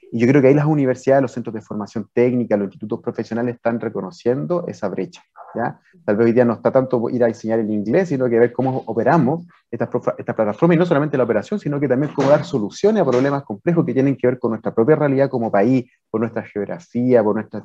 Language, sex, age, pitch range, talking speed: Spanish, male, 30-49, 115-155 Hz, 235 wpm